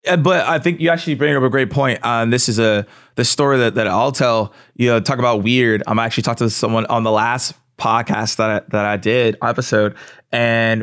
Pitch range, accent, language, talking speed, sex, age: 115-155 Hz, American, English, 250 wpm, male, 20-39